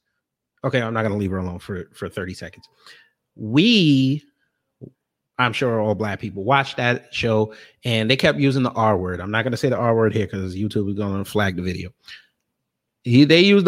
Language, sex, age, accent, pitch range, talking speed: English, male, 30-49, American, 105-140 Hz, 195 wpm